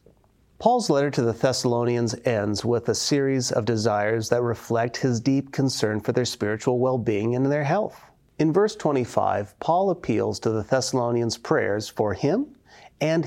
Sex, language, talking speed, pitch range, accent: male, English, 160 wpm, 115-155 Hz, American